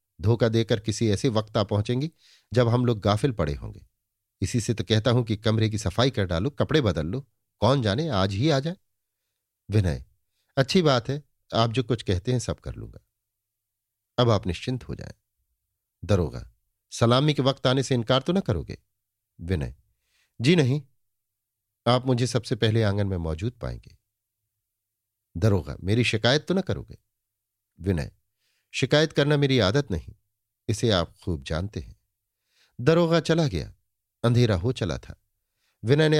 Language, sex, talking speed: Hindi, male, 160 wpm